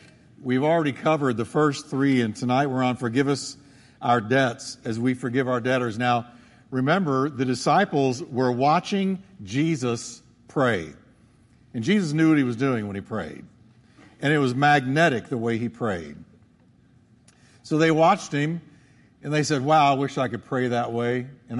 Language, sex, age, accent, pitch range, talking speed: English, male, 50-69, American, 120-150 Hz, 170 wpm